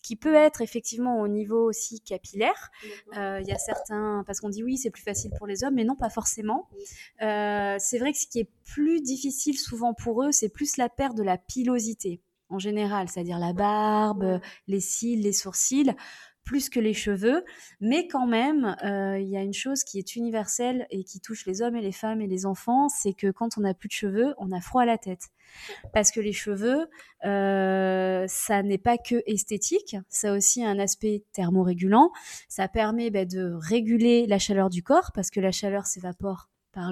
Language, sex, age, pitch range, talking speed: French, female, 20-39, 195-240 Hz, 210 wpm